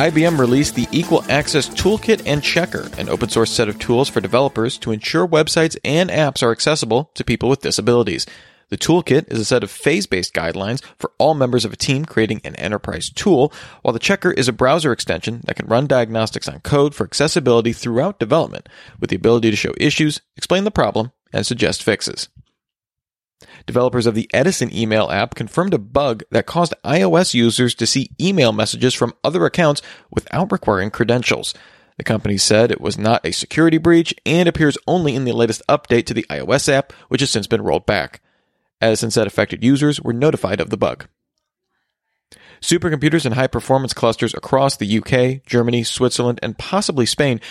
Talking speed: 180 wpm